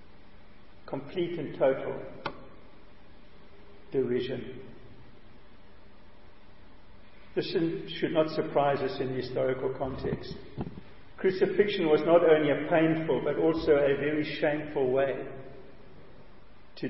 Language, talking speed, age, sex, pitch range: English, 90 wpm, 50-69, male, 120-160 Hz